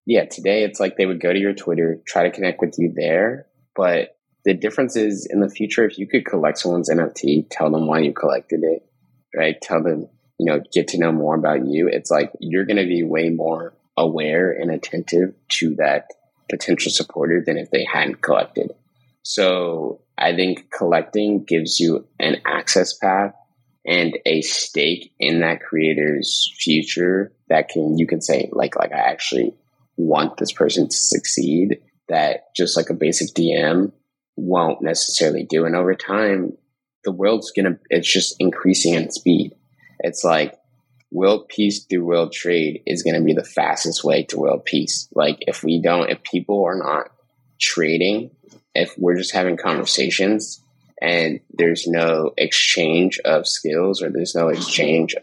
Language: English